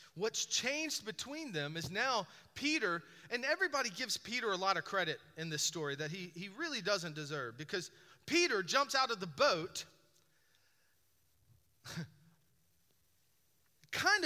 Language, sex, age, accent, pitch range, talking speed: English, male, 30-49, American, 195-290 Hz, 135 wpm